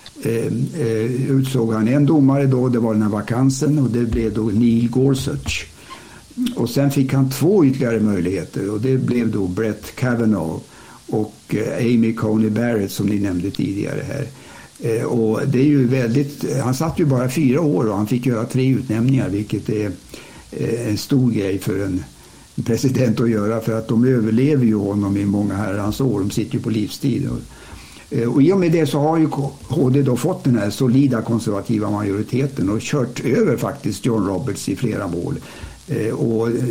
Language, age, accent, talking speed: Swedish, 60-79, Norwegian, 180 wpm